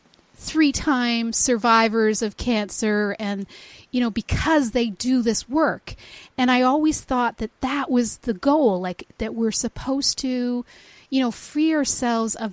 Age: 40-59